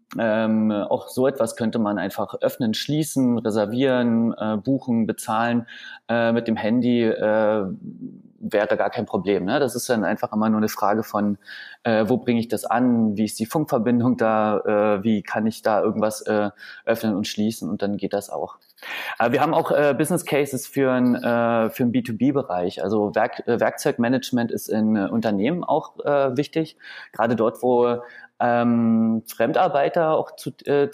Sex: male